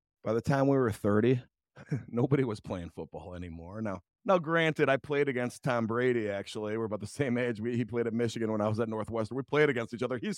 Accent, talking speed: American, 235 wpm